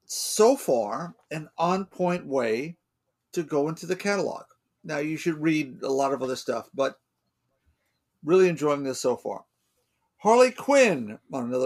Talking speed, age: 140 wpm, 50-69